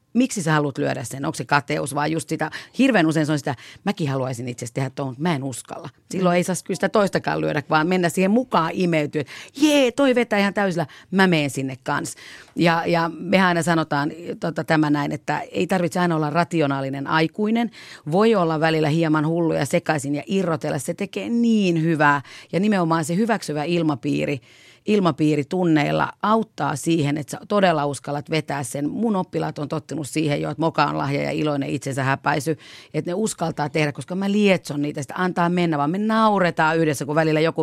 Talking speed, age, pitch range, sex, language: 190 wpm, 40-59, 145-185 Hz, female, Finnish